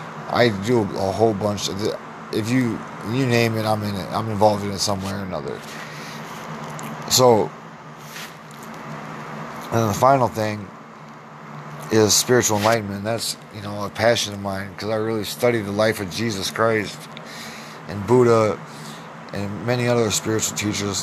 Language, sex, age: English, male, 20-39